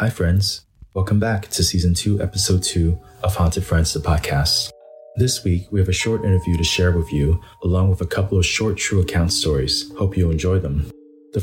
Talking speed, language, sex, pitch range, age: 205 wpm, English, male, 80-95 Hz, 20-39